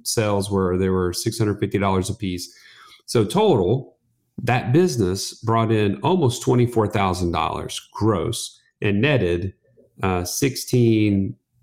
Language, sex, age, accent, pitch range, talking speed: English, male, 40-59, American, 100-130 Hz, 105 wpm